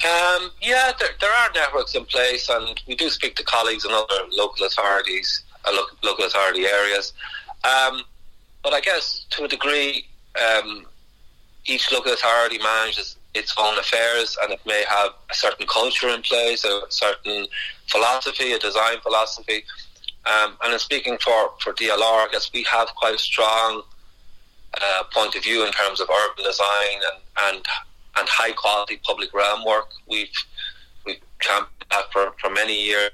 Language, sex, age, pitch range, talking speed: English, male, 30-49, 100-130 Hz, 165 wpm